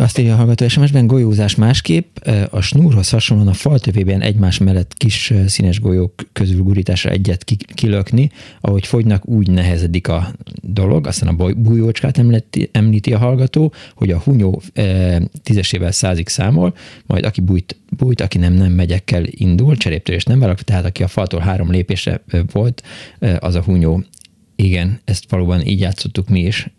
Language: Hungarian